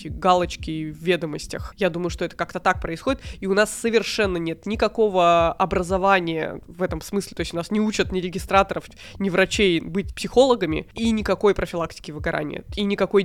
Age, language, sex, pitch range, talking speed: 20-39, Russian, female, 170-200 Hz, 170 wpm